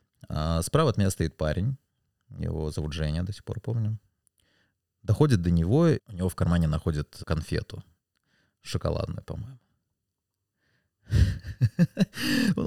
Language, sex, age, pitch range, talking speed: Russian, male, 20-39, 95-125 Hz, 110 wpm